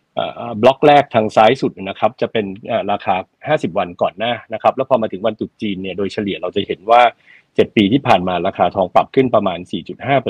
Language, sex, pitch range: Thai, male, 105-140 Hz